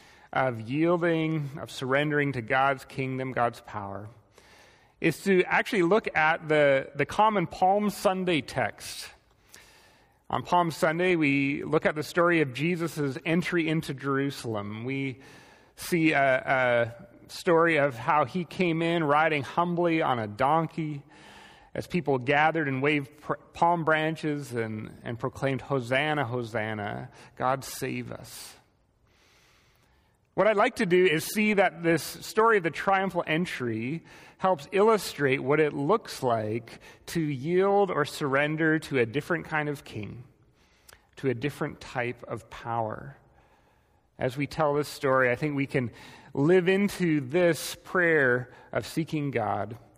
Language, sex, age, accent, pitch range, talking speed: English, male, 30-49, American, 130-170 Hz, 140 wpm